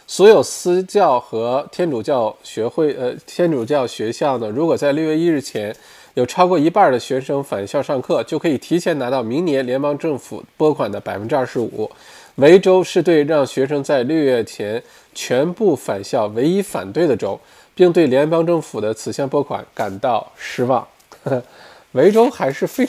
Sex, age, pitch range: male, 20-39, 125-175 Hz